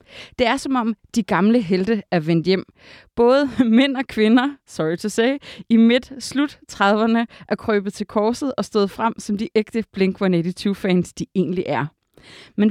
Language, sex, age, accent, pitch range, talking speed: Danish, female, 30-49, native, 190-240 Hz, 155 wpm